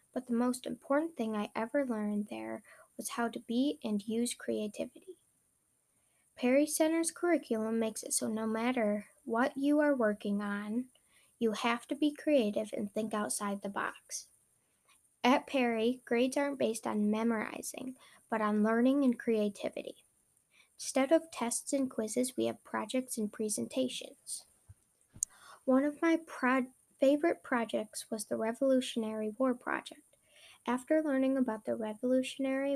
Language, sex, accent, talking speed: English, female, American, 140 wpm